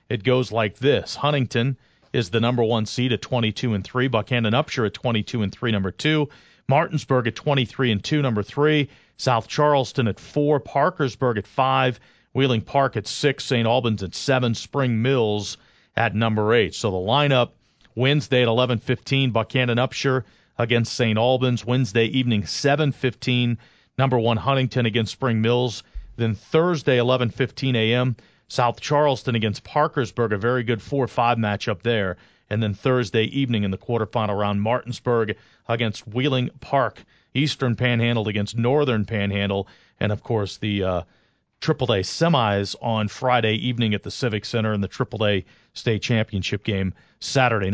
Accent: American